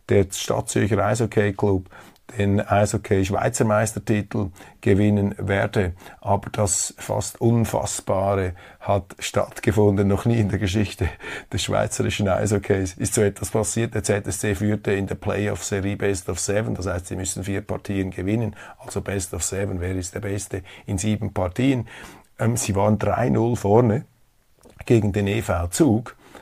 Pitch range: 95-105 Hz